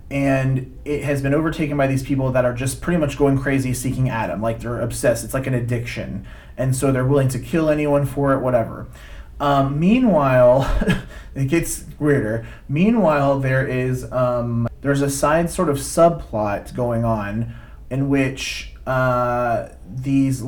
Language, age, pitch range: English, 30-49, 120-135 Hz